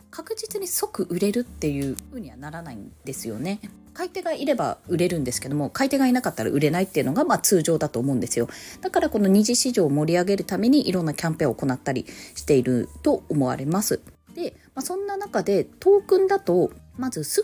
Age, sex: 20-39, female